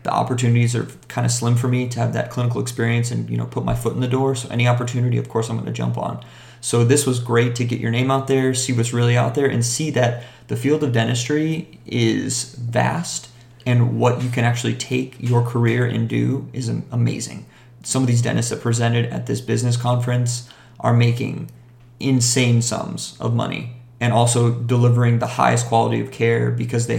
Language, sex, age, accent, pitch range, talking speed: English, male, 30-49, American, 120-130 Hz, 210 wpm